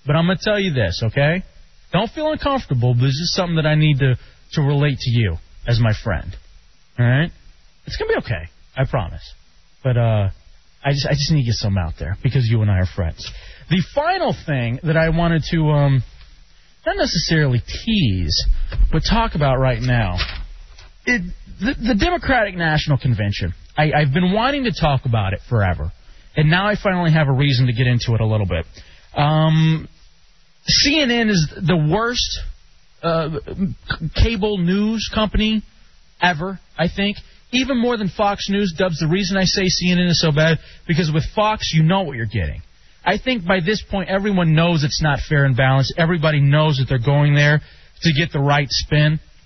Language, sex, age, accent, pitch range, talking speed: English, male, 30-49, American, 120-180 Hz, 190 wpm